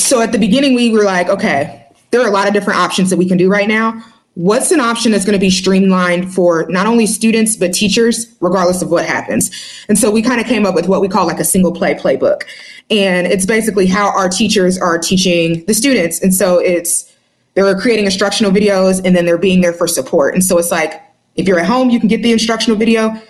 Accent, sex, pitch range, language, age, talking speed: American, female, 180-215 Hz, English, 20-39, 235 wpm